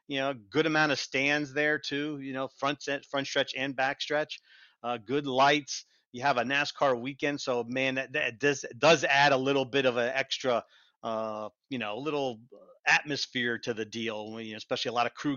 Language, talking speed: English, 215 wpm